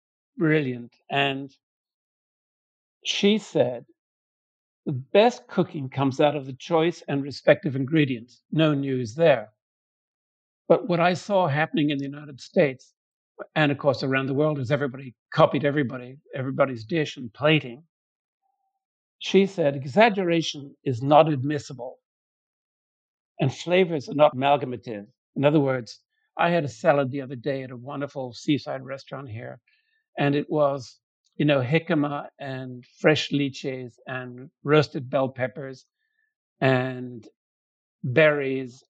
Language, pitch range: English, 130-160 Hz